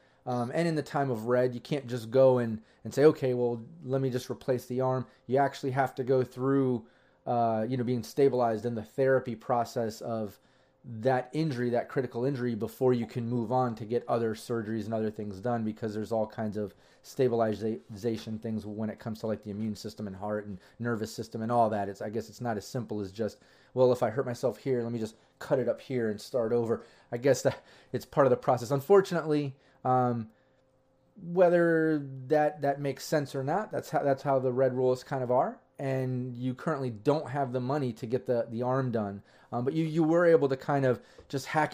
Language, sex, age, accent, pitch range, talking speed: English, male, 30-49, American, 115-140 Hz, 220 wpm